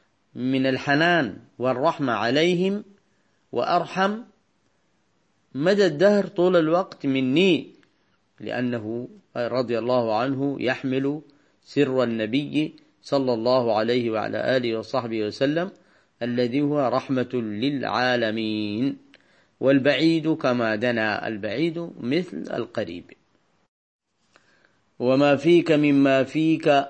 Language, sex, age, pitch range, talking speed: Arabic, male, 40-59, 125-145 Hz, 85 wpm